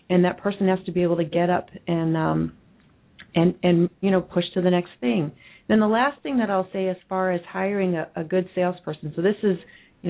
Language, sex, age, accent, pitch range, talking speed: English, female, 40-59, American, 170-195 Hz, 240 wpm